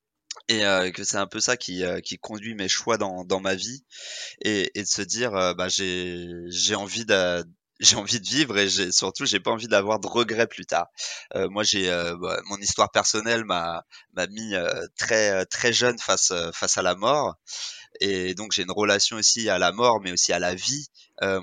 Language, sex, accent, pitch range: French, male, French, 90-115 Hz